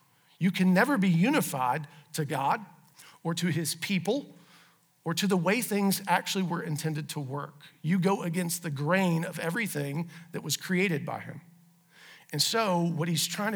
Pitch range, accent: 160-190 Hz, American